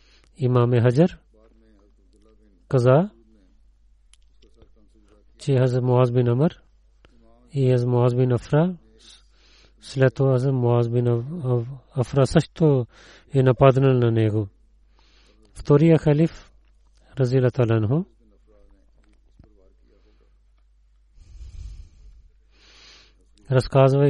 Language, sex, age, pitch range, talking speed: Bulgarian, male, 30-49, 110-140 Hz, 75 wpm